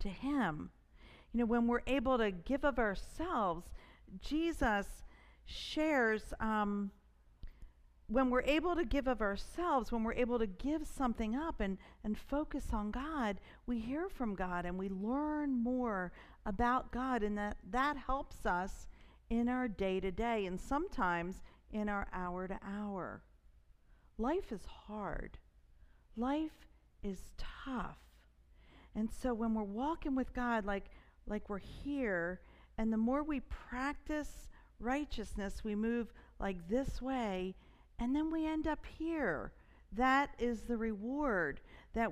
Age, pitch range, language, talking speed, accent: 50-69, 205-265 Hz, English, 135 wpm, American